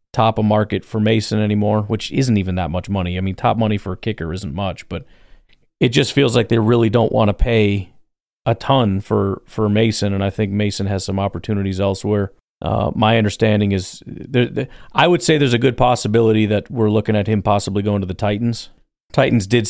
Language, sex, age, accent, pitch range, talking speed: English, male, 40-59, American, 100-120 Hz, 205 wpm